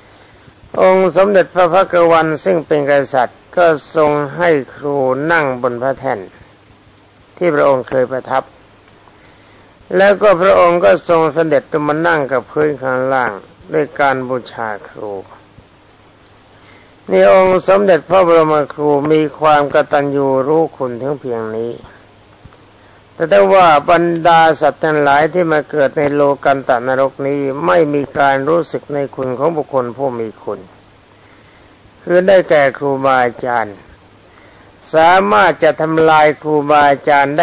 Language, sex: Thai, male